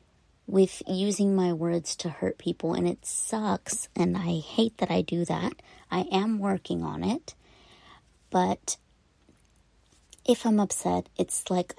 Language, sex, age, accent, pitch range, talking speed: English, female, 30-49, American, 175-215 Hz, 145 wpm